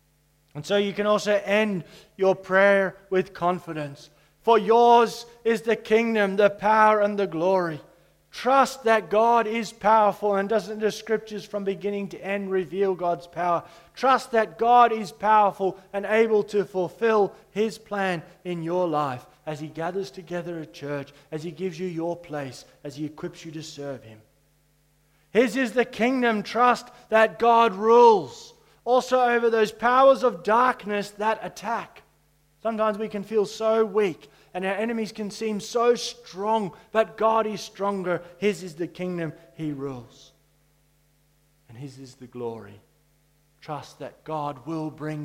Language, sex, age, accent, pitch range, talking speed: English, male, 30-49, Australian, 160-220 Hz, 155 wpm